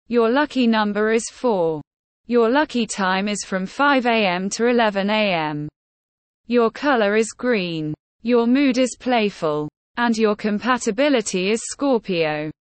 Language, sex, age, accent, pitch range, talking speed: English, female, 20-39, British, 190-240 Hz, 125 wpm